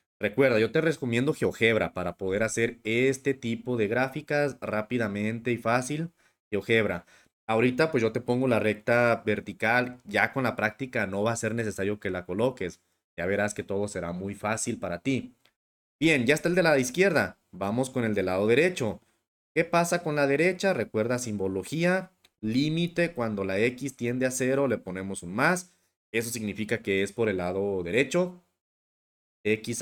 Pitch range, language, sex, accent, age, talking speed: 105-135 Hz, English, male, Mexican, 30-49, 170 wpm